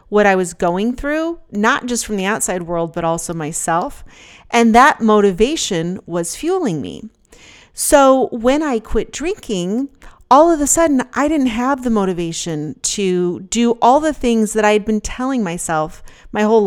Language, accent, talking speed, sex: English, American, 170 wpm, female